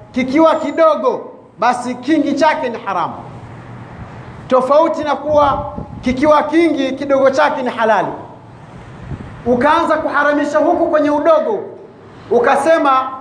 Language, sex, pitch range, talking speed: Swahili, male, 265-310 Hz, 100 wpm